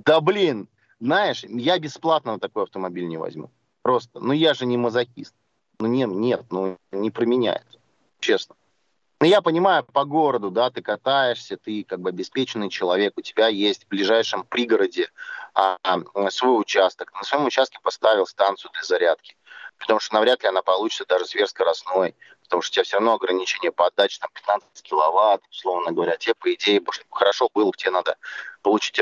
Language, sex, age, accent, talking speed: Russian, male, 30-49, native, 175 wpm